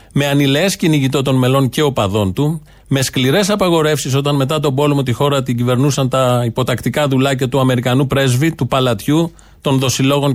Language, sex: Greek, male